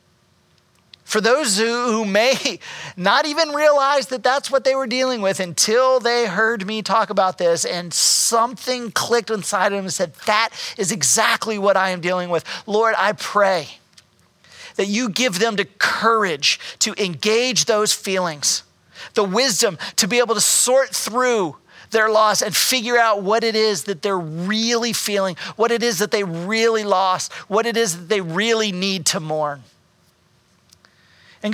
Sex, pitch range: male, 180-225 Hz